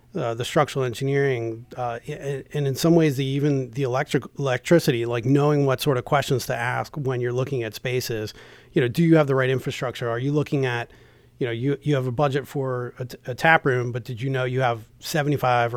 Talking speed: 230 wpm